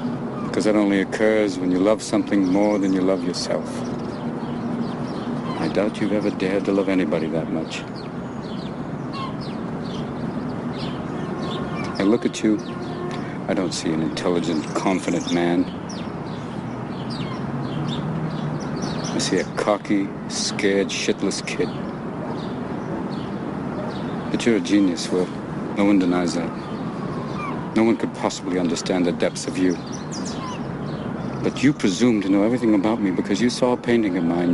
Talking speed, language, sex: 130 wpm, English, male